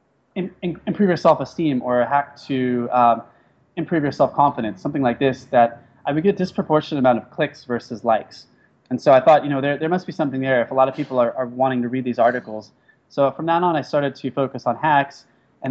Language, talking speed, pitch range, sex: English, 230 wpm, 120-145 Hz, male